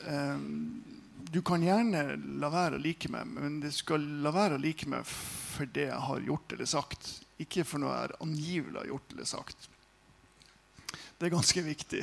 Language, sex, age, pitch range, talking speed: English, male, 50-69, 145-185 Hz, 170 wpm